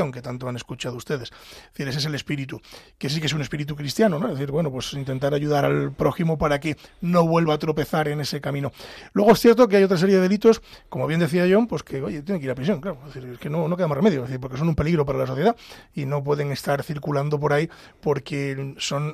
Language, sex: Spanish, male